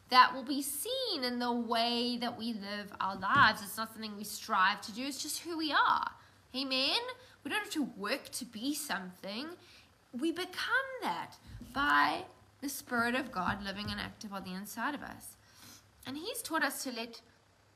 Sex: female